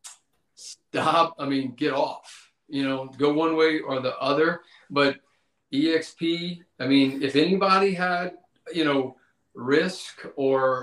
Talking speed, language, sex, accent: 125 wpm, English, male, American